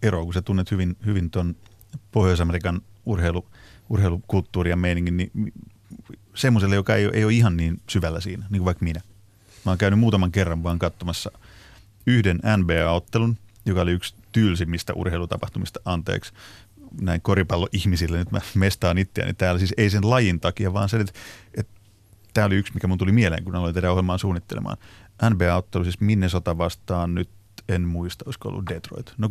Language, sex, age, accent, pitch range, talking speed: Finnish, male, 30-49, native, 90-110 Hz, 165 wpm